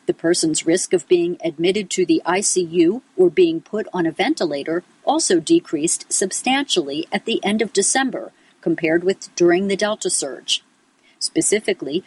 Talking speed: 150 wpm